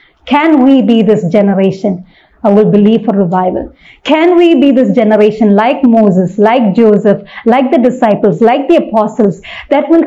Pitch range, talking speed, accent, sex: 205-255 Hz, 160 wpm, Indian, female